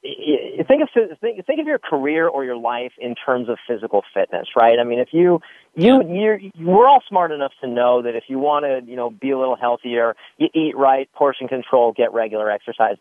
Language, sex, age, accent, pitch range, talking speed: English, male, 40-59, American, 120-155 Hz, 210 wpm